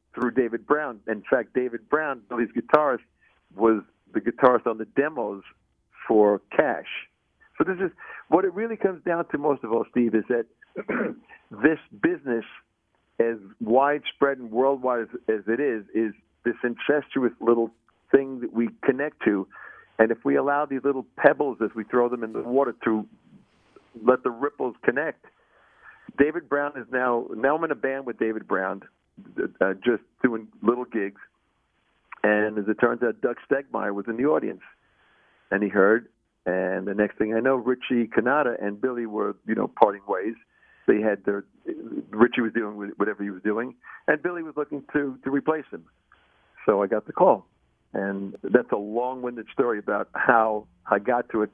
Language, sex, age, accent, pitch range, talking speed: English, male, 50-69, American, 110-135 Hz, 175 wpm